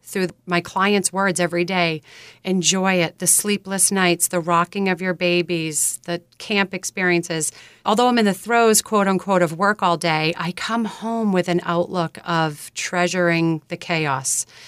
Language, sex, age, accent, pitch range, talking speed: English, female, 40-59, American, 170-195 Hz, 165 wpm